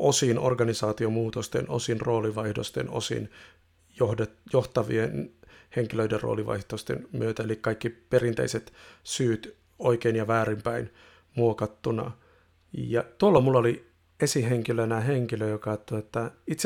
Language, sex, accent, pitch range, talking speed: Finnish, male, native, 110-125 Hz, 95 wpm